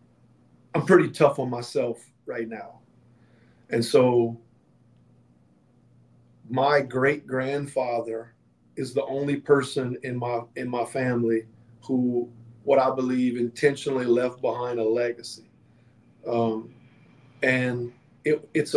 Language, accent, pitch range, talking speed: English, American, 120-135 Hz, 105 wpm